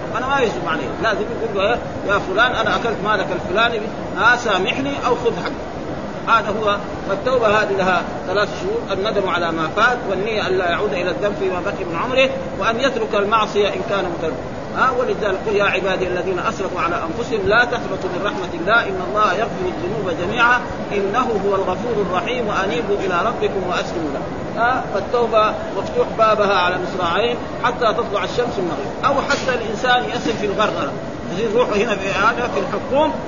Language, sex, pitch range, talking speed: Arabic, male, 190-235 Hz, 160 wpm